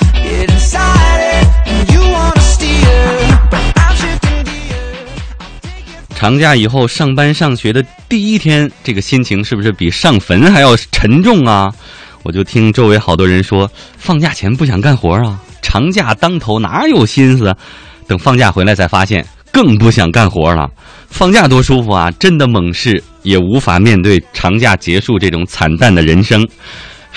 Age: 20-39